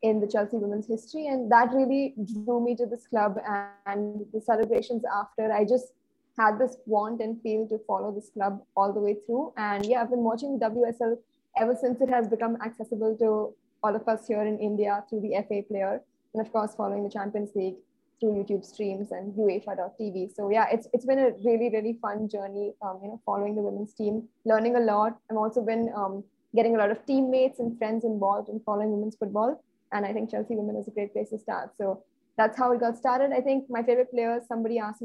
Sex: female